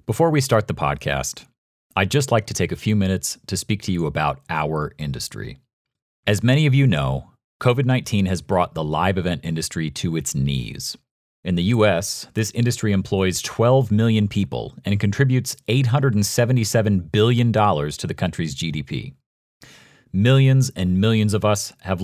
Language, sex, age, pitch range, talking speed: English, male, 40-59, 85-115 Hz, 160 wpm